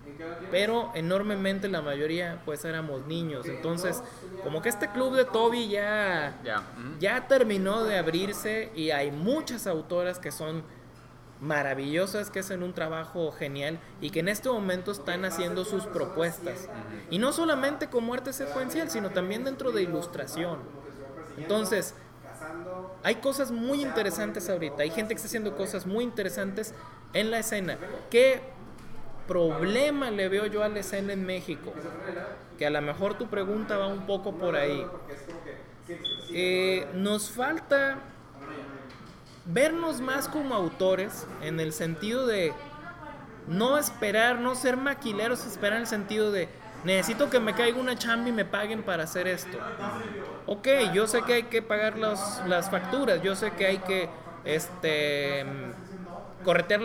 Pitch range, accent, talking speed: 165-225 Hz, Mexican, 150 wpm